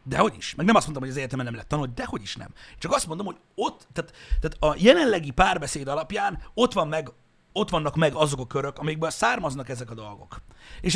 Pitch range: 120-170 Hz